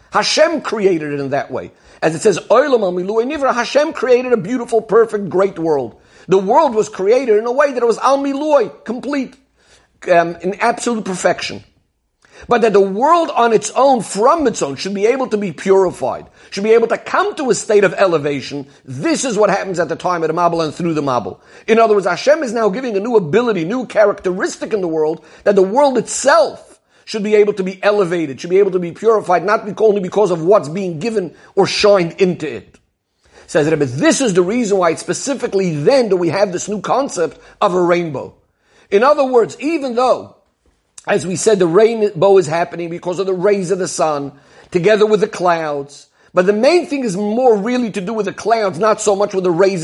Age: 50-69